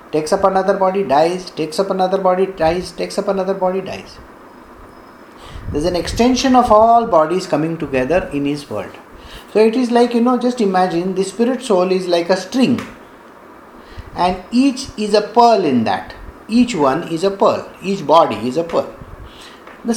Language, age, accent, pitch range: English, 50-69, Indian, 150-220 Hz